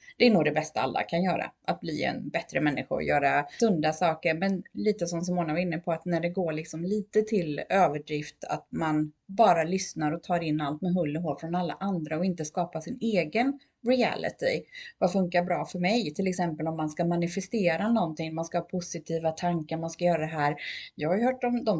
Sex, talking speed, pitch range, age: female, 225 wpm, 160-195 Hz, 30-49